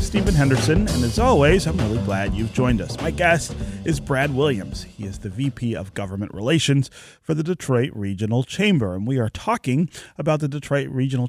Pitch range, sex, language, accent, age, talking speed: 100-140 Hz, male, English, American, 30-49, 190 wpm